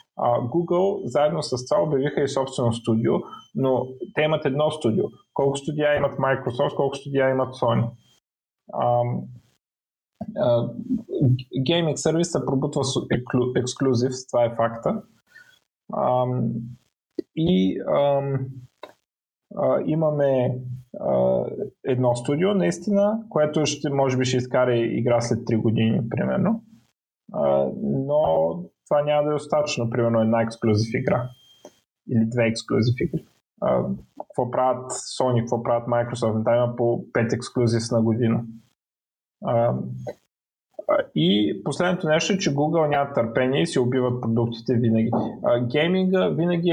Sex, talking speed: male, 125 wpm